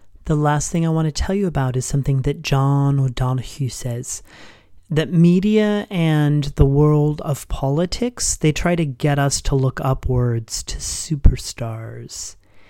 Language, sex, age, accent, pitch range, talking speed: English, male, 30-49, American, 105-150 Hz, 150 wpm